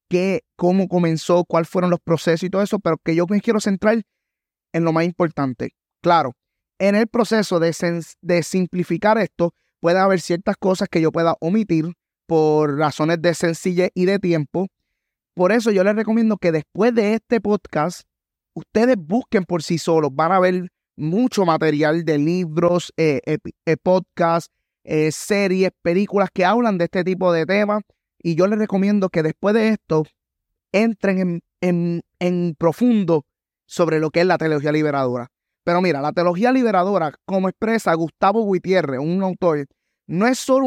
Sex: male